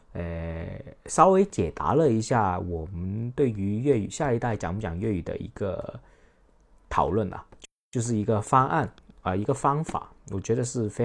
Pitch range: 100-140 Hz